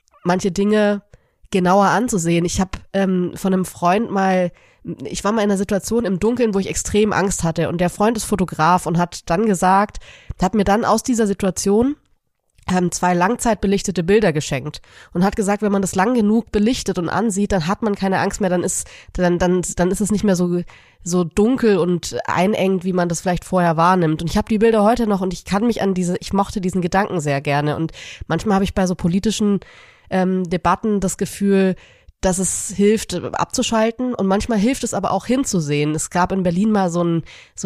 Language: German